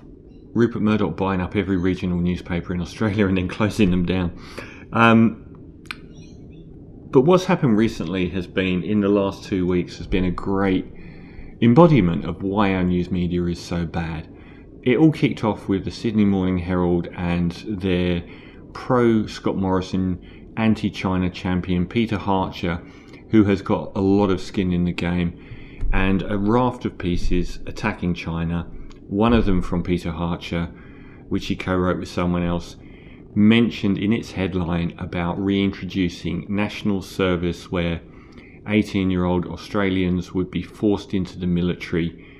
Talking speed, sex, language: 145 wpm, male, English